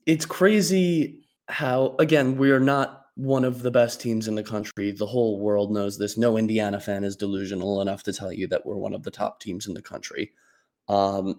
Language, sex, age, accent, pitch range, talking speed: English, male, 20-39, American, 105-125 Hz, 210 wpm